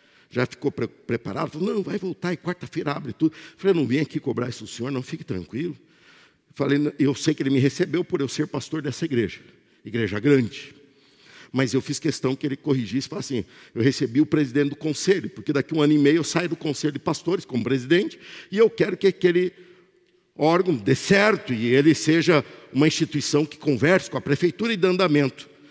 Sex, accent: male, Brazilian